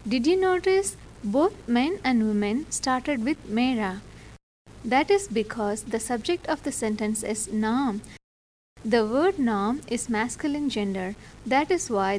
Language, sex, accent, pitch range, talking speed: English, female, Indian, 215-290 Hz, 145 wpm